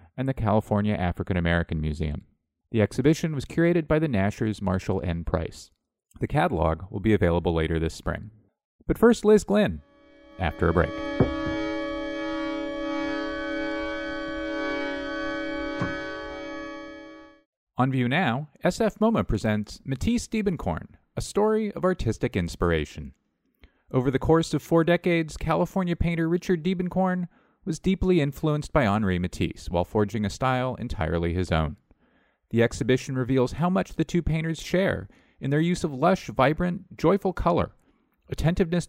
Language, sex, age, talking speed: English, male, 40-59, 130 wpm